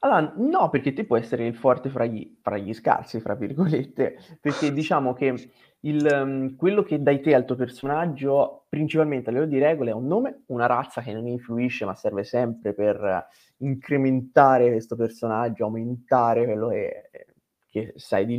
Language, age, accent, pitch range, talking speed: Italian, 20-39, native, 115-145 Hz, 175 wpm